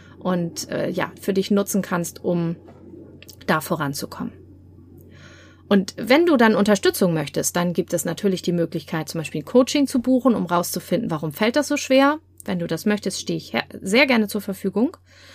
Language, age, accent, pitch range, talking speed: German, 30-49, German, 175-240 Hz, 180 wpm